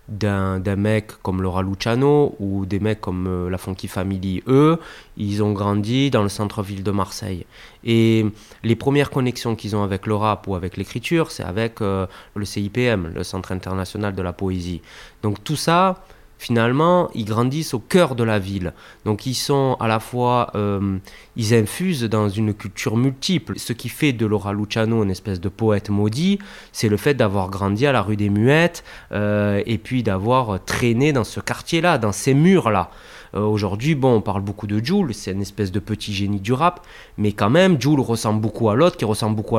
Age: 20-39